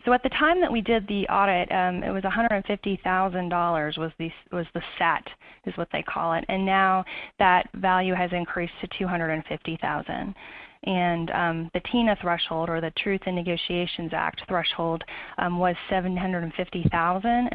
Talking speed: 155 wpm